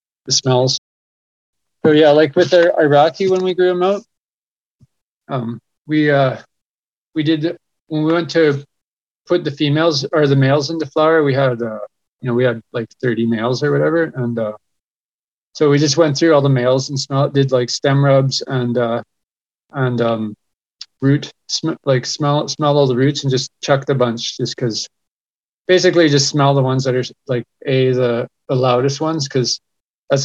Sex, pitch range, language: male, 125-150 Hz, English